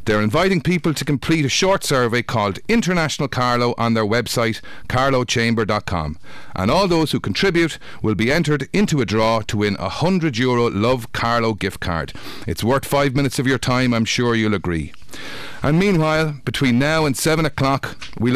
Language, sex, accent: English, male, Irish